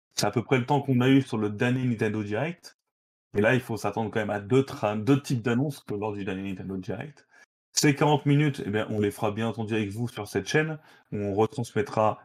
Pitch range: 110-140 Hz